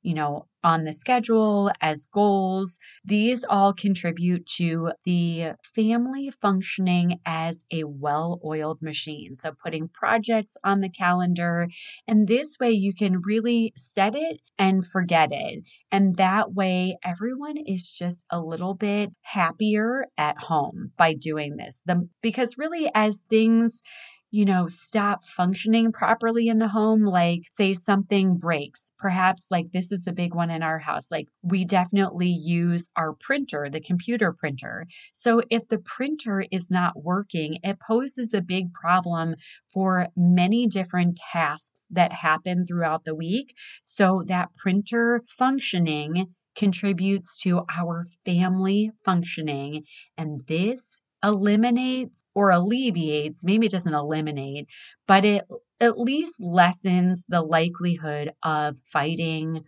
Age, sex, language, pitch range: 30-49, female, English, 165-210 Hz